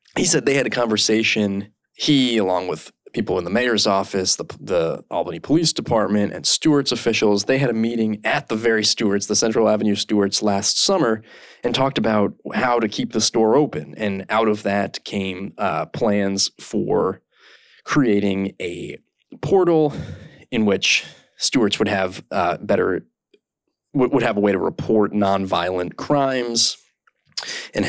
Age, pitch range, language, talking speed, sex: 20-39, 100-125 Hz, English, 155 wpm, male